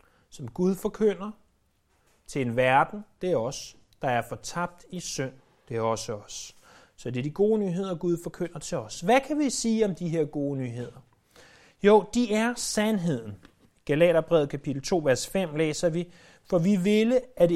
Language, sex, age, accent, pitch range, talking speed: Danish, male, 30-49, native, 135-190 Hz, 180 wpm